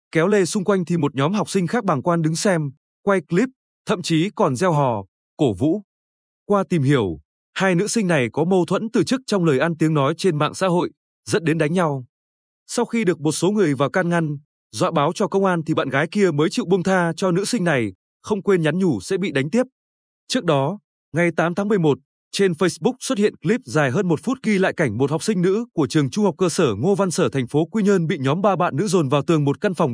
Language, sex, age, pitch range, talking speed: Vietnamese, male, 20-39, 145-200 Hz, 255 wpm